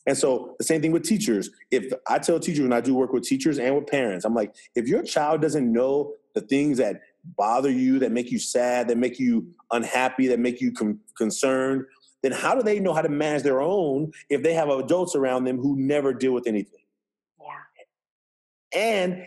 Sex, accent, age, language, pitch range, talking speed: male, American, 30-49, English, 130-180 Hz, 210 wpm